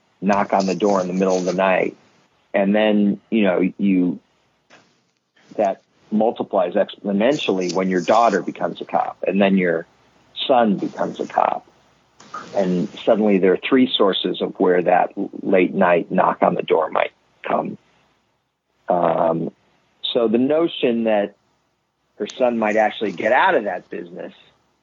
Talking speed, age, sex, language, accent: 150 wpm, 50-69, male, English, American